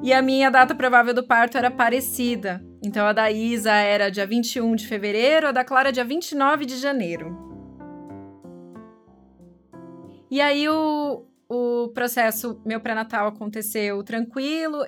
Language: Portuguese